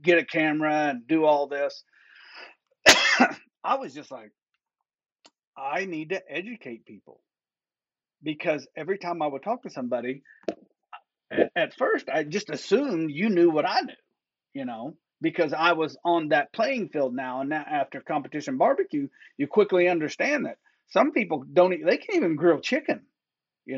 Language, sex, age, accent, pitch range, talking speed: English, male, 40-59, American, 150-195 Hz, 160 wpm